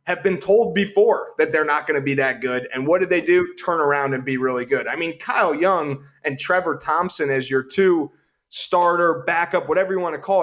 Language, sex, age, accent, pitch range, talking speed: English, male, 30-49, American, 140-185 Hz, 230 wpm